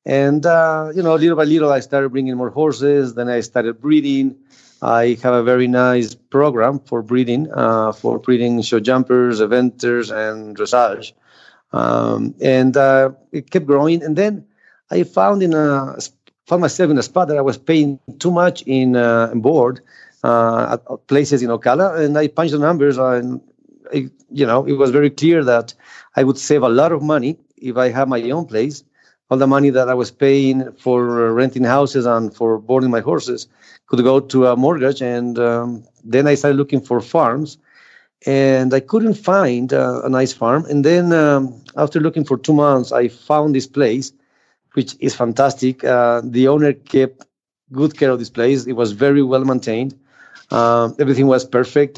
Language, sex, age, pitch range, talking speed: English, male, 40-59, 120-145 Hz, 185 wpm